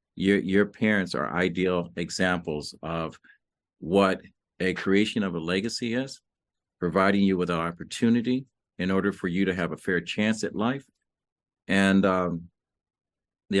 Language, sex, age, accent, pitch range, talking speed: English, male, 50-69, American, 90-105 Hz, 145 wpm